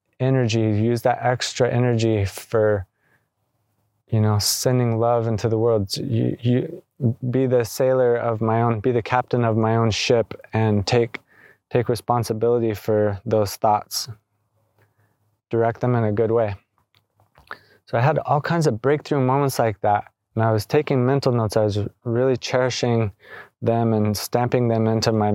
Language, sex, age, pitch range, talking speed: English, male, 20-39, 110-125 Hz, 160 wpm